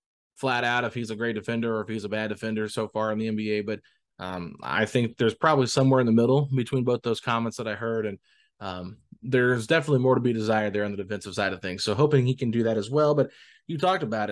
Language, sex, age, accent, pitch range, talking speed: English, male, 20-39, American, 110-135 Hz, 260 wpm